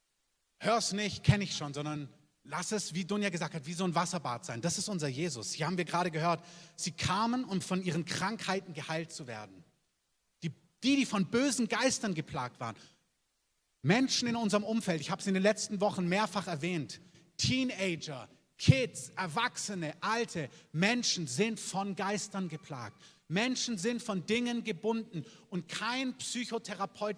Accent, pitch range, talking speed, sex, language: German, 165-215 Hz, 160 wpm, male, German